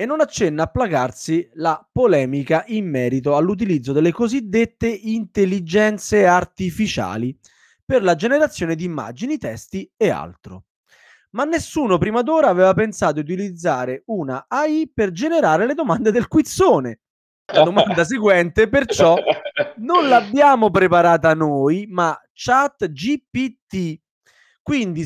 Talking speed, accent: 120 wpm, native